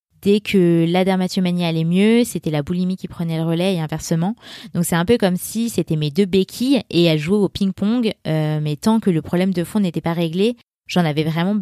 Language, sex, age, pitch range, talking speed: French, female, 20-39, 165-205 Hz, 225 wpm